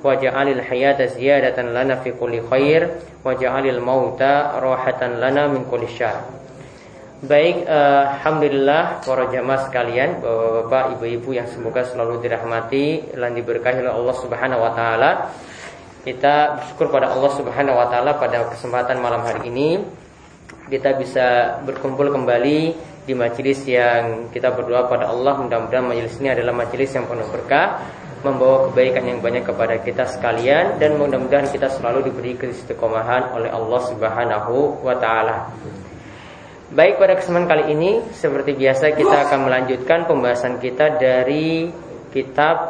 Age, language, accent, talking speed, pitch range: 20-39, English, Indonesian, 135 wpm, 125-145 Hz